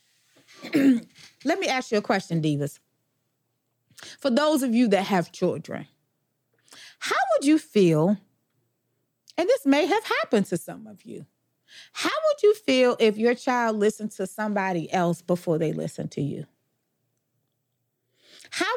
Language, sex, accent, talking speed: English, female, American, 140 wpm